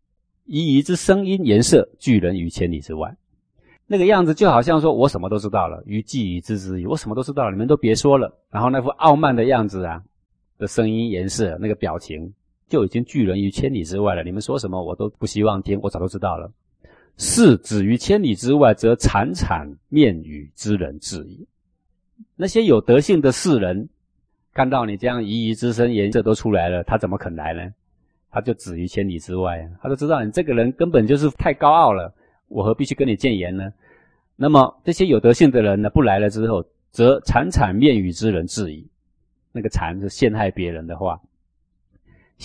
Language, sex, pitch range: Chinese, male, 90-120 Hz